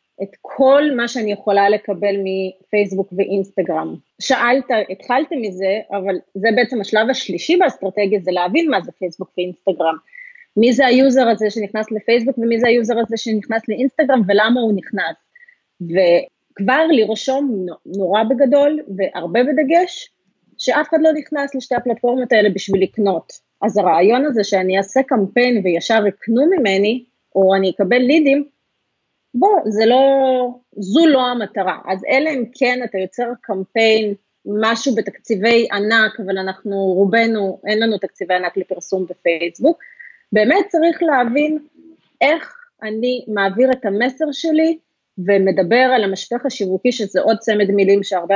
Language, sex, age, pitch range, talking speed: Hebrew, female, 30-49, 195-270 Hz, 135 wpm